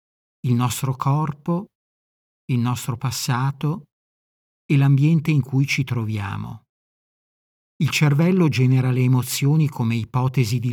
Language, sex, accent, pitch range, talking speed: Italian, male, native, 115-145 Hz, 110 wpm